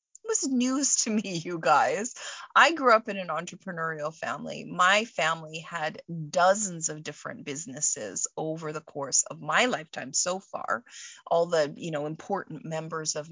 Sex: female